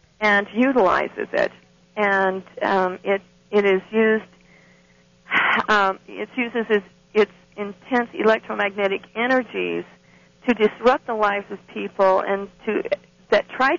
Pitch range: 190-230 Hz